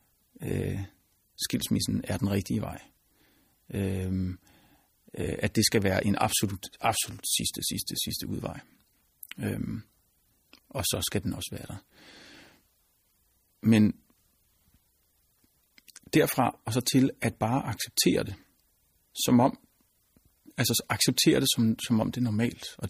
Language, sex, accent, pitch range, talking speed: Danish, male, native, 100-125 Hz, 125 wpm